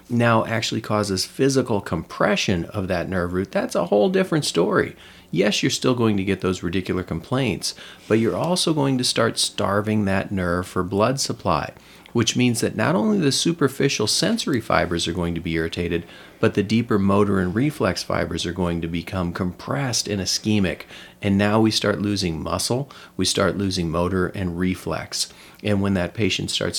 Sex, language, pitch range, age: male, English, 90-110 Hz, 40-59